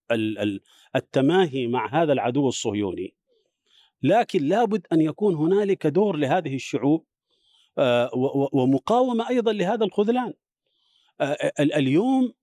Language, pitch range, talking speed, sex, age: Arabic, 125-200 Hz, 90 wpm, male, 40-59